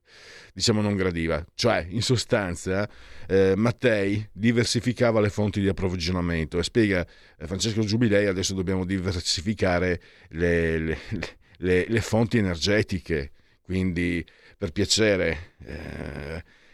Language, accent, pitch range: Italian, native, 90-125 Hz